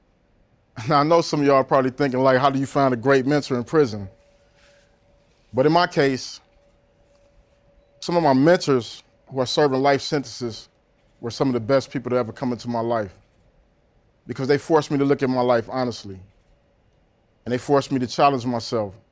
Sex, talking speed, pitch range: male, 190 wpm, 110-145 Hz